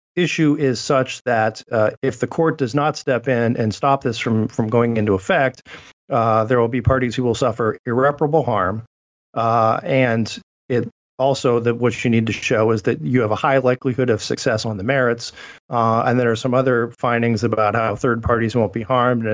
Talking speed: 210 wpm